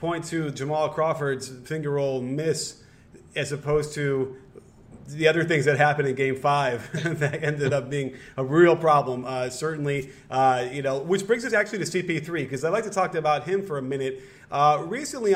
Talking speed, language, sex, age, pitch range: 190 wpm, English, male, 30-49, 140-185 Hz